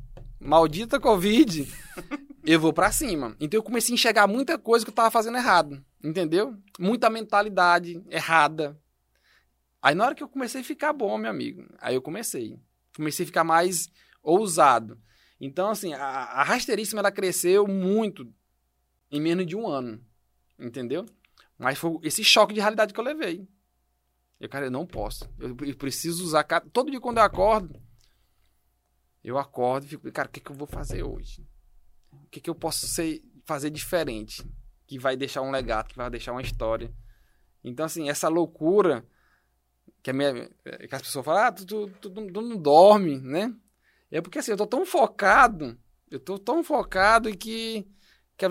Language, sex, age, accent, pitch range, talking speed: Portuguese, male, 20-39, Brazilian, 130-215 Hz, 170 wpm